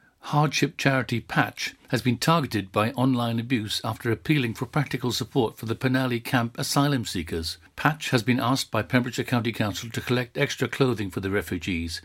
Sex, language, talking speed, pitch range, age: male, English, 175 wpm, 110-130 Hz, 60-79